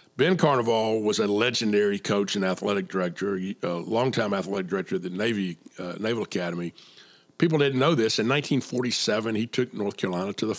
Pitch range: 95-125 Hz